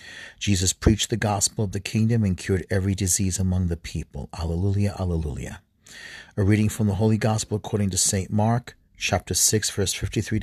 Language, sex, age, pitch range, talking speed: English, male, 40-59, 95-115 Hz, 175 wpm